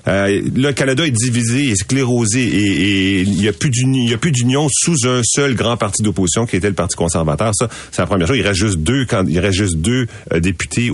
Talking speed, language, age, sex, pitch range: 230 wpm, French, 40-59, male, 95-120 Hz